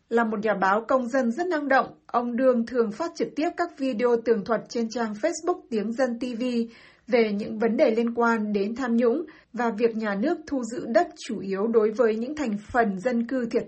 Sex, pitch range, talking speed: female, 215-260 Hz, 225 wpm